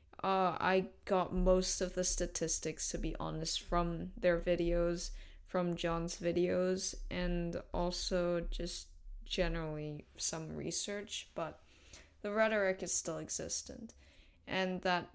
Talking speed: 120 wpm